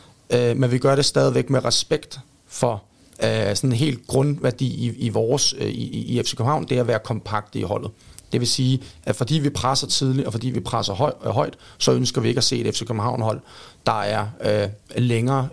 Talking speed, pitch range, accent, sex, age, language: 185 wpm, 115-140 Hz, native, male, 30-49, Danish